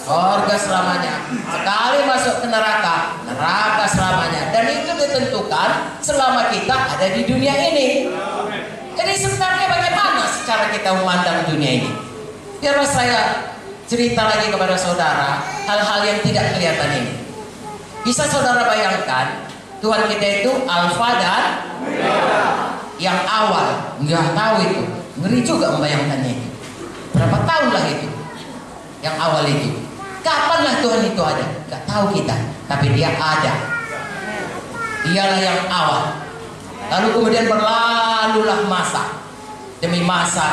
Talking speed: 115 wpm